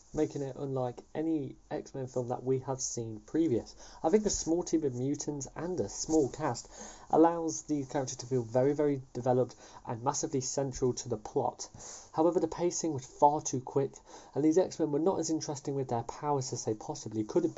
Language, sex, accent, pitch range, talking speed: English, male, British, 125-160 Hz, 200 wpm